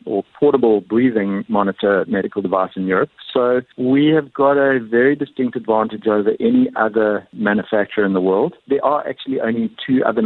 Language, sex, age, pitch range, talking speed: English, male, 50-69, 115-150 Hz, 170 wpm